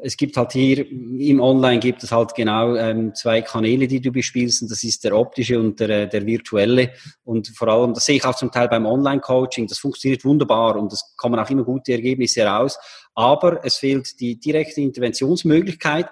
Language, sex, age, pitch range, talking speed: German, male, 30-49, 115-145 Hz, 195 wpm